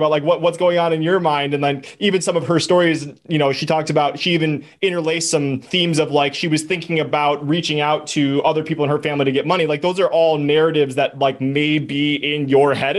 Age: 20-39